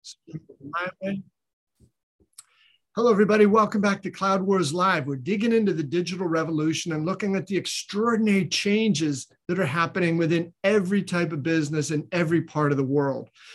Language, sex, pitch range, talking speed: English, male, 150-185 Hz, 150 wpm